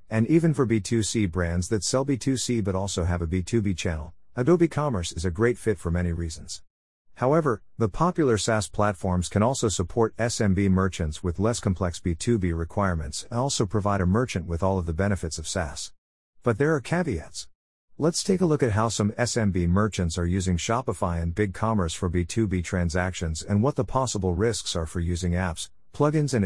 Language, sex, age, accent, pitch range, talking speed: English, male, 50-69, American, 90-120 Hz, 185 wpm